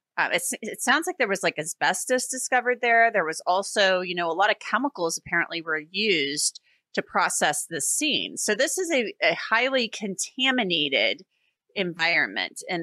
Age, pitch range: 30-49, 170-220 Hz